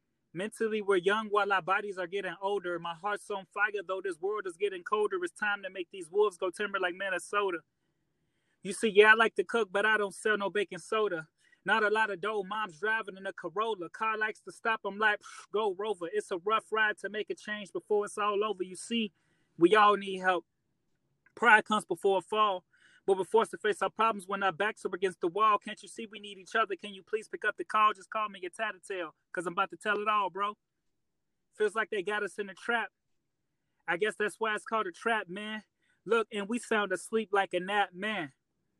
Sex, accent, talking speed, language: male, American, 235 wpm, English